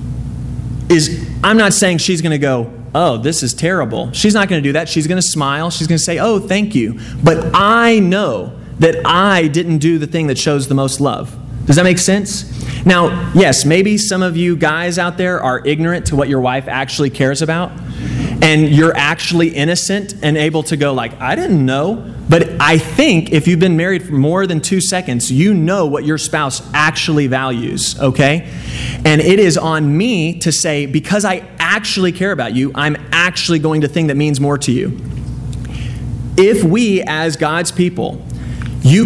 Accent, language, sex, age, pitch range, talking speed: American, English, male, 30-49, 135-180 Hz, 185 wpm